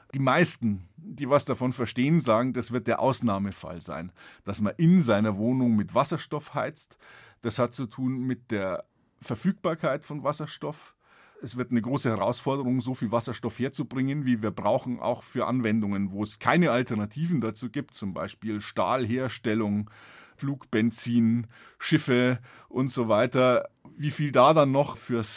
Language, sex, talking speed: German, male, 155 wpm